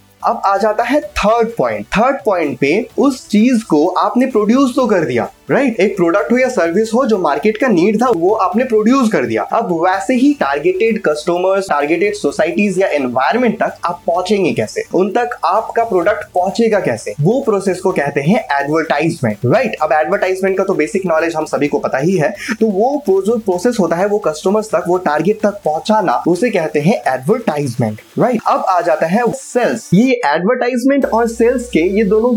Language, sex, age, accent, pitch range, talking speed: Hindi, male, 20-39, native, 165-225 Hz, 180 wpm